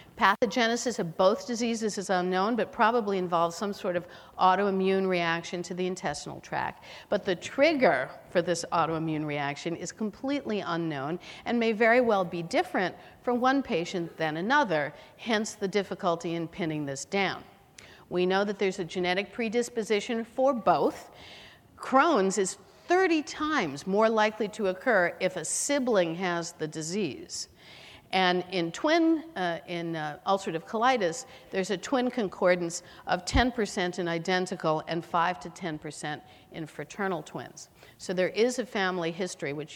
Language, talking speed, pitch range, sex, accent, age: English, 150 wpm, 170-225 Hz, female, American, 50-69